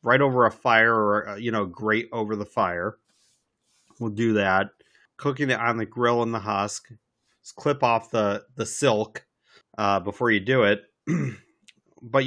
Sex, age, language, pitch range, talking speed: male, 30-49, English, 110-145 Hz, 165 wpm